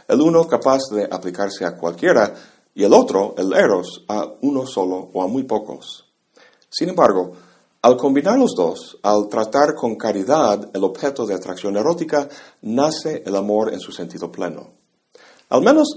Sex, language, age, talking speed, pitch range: male, Spanish, 50-69, 160 wpm, 95-140 Hz